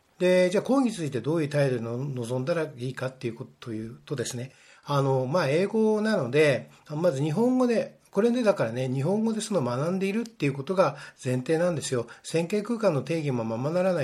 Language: Japanese